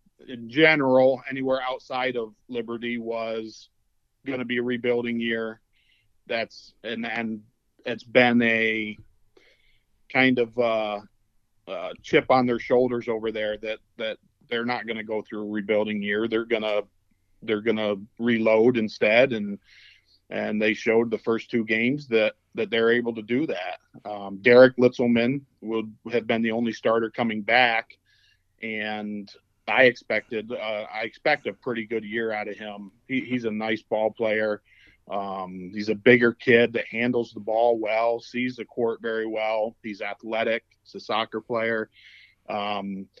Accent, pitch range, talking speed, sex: American, 110-120 Hz, 160 wpm, male